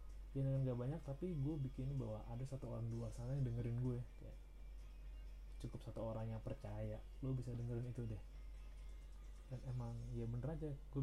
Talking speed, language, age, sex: 170 wpm, Indonesian, 20-39, male